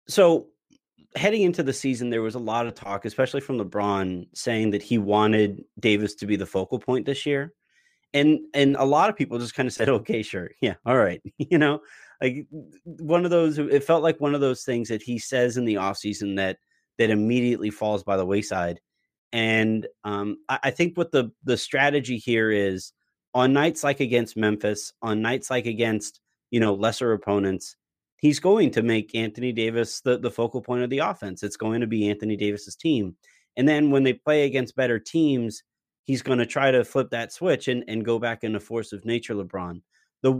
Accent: American